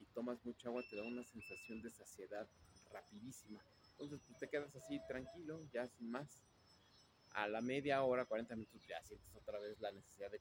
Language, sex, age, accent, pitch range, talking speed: Spanish, male, 30-49, Mexican, 105-130 Hz, 185 wpm